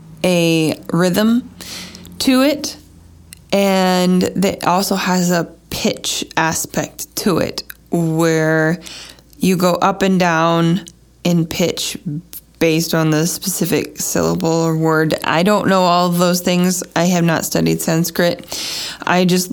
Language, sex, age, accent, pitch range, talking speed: English, female, 20-39, American, 165-205 Hz, 130 wpm